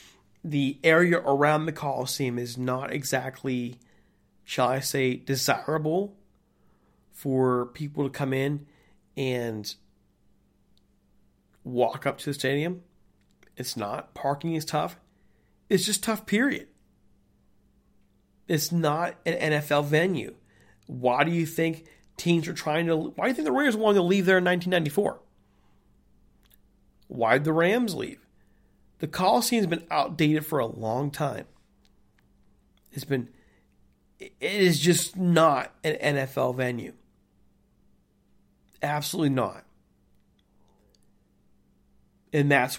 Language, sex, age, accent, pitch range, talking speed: English, male, 40-59, American, 125-165 Hz, 115 wpm